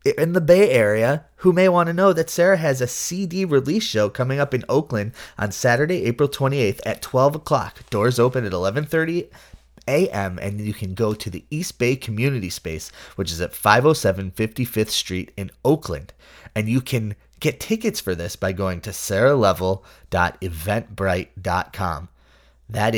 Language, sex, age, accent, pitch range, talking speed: English, male, 30-49, American, 90-130 Hz, 160 wpm